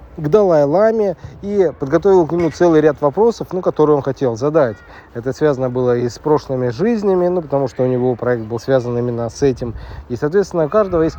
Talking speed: 200 wpm